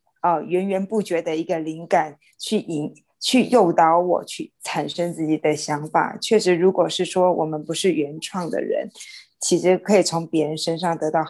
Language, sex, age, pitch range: Chinese, female, 20-39, 160-195 Hz